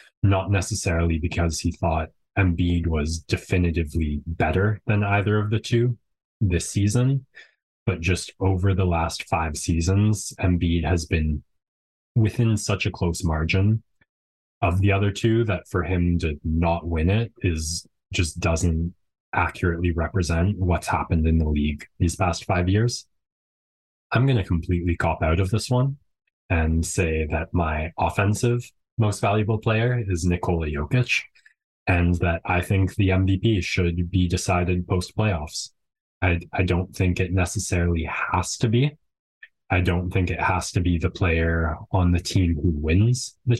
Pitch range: 85-105 Hz